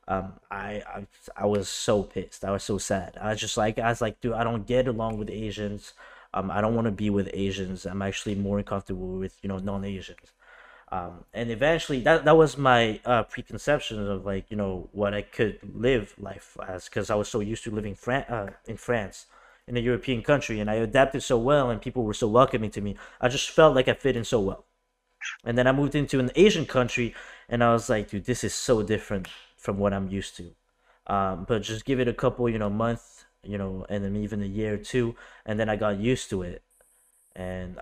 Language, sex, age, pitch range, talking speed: English, male, 20-39, 100-120 Hz, 230 wpm